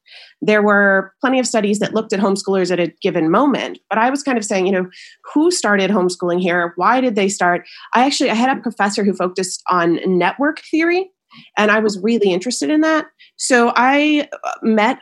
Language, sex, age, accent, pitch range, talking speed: English, female, 30-49, American, 185-235 Hz, 200 wpm